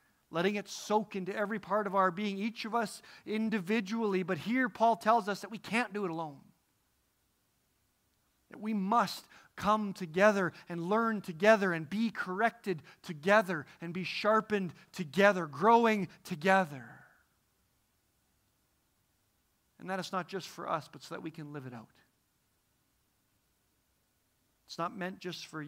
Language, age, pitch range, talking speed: English, 40-59, 155-200 Hz, 145 wpm